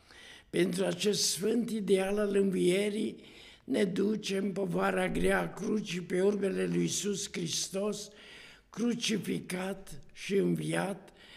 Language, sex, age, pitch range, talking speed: Romanian, male, 60-79, 140-200 Hz, 110 wpm